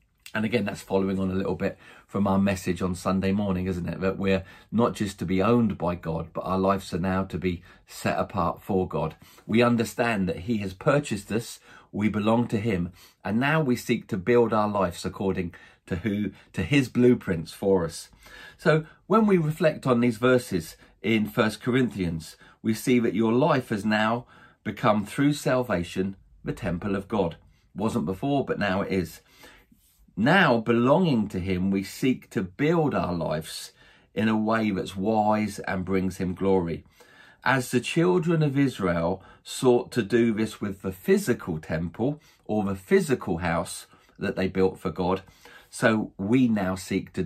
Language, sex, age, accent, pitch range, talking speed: English, male, 40-59, British, 95-120 Hz, 180 wpm